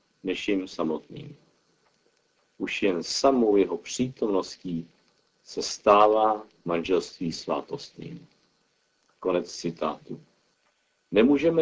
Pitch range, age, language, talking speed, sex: 95-120 Hz, 50-69, Czech, 75 wpm, male